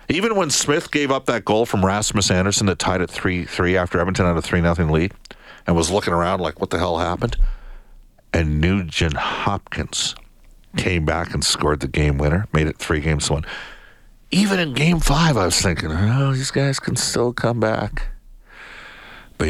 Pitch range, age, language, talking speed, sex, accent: 80-115 Hz, 50-69, English, 185 wpm, male, American